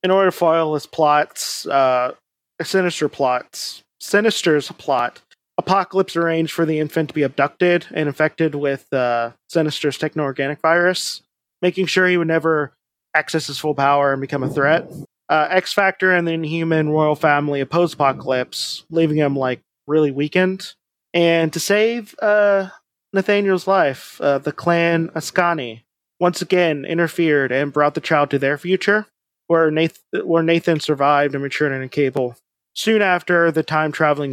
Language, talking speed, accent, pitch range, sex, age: English, 150 wpm, American, 140-170 Hz, male, 30-49